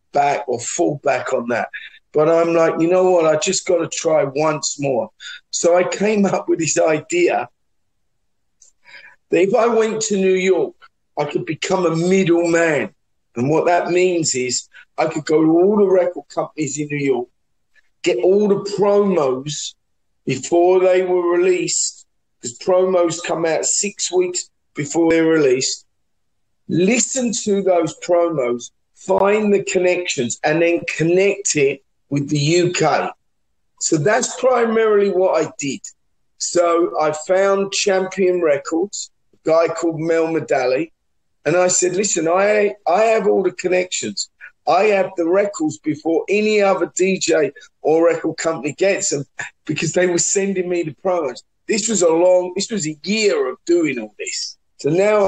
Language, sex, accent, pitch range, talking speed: English, male, British, 160-195 Hz, 155 wpm